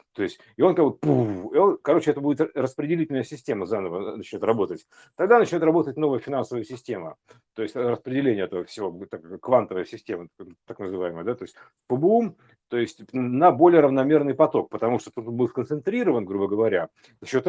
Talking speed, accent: 170 wpm, native